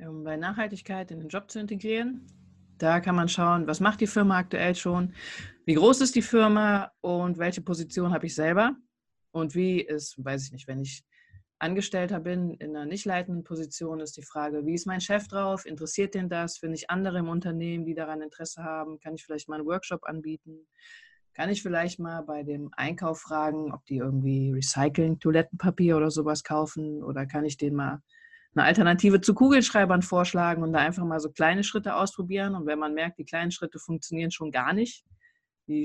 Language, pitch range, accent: German, 155-190 Hz, German